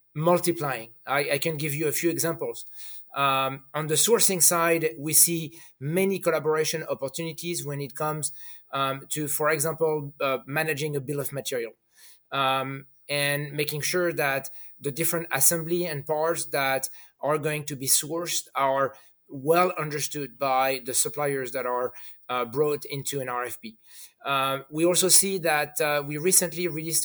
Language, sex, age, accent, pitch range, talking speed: English, male, 30-49, French, 135-165 Hz, 155 wpm